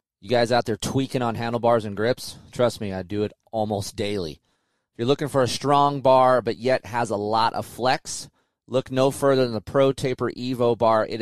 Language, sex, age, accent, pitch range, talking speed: English, male, 30-49, American, 110-140 Hz, 215 wpm